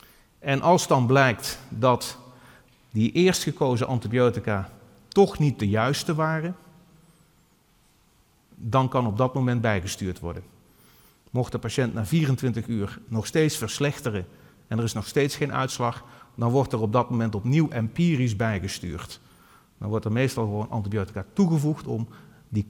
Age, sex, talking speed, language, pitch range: 40-59, male, 145 wpm, Dutch, 110-145 Hz